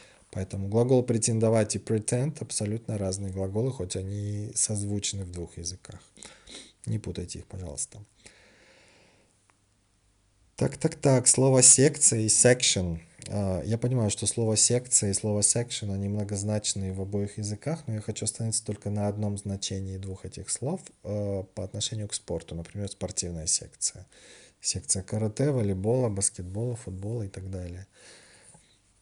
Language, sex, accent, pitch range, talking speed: Russian, male, native, 95-115 Hz, 130 wpm